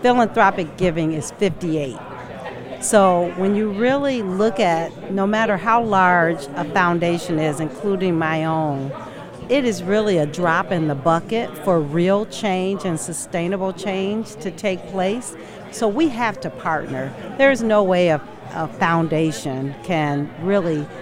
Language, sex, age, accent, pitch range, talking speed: English, female, 50-69, American, 160-200 Hz, 145 wpm